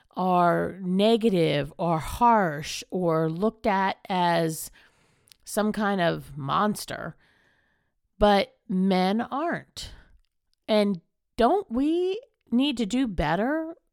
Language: English